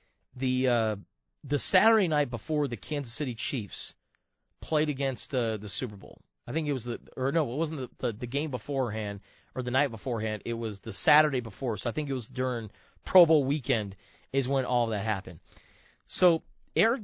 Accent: American